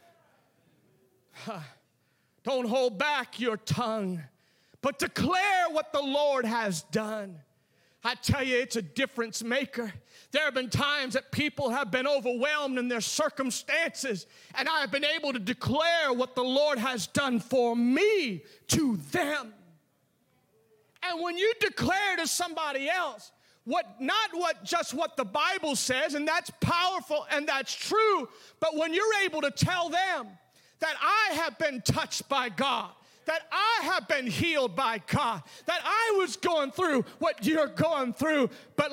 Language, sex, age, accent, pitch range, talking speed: English, male, 40-59, American, 250-330 Hz, 155 wpm